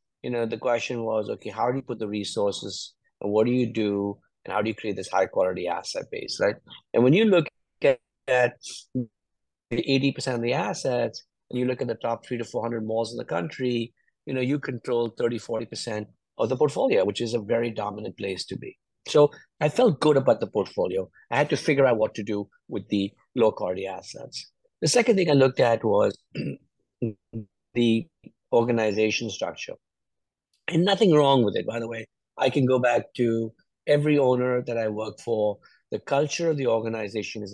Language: English